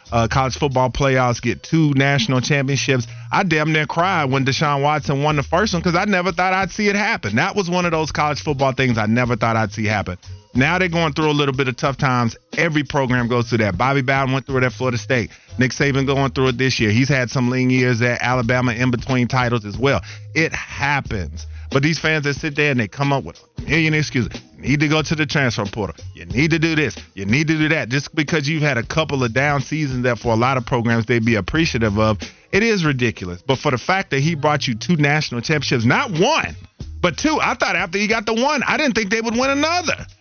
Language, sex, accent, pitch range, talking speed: English, male, American, 120-155 Hz, 250 wpm